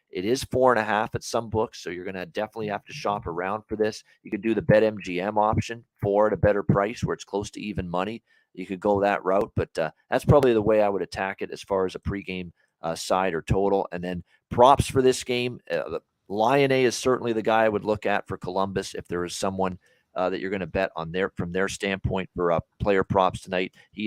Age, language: 40-59, English